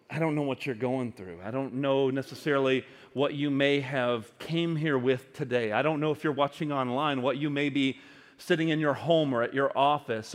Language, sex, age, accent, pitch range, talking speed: English, male, 40-59, American, 135-175 Hz, 220 wpm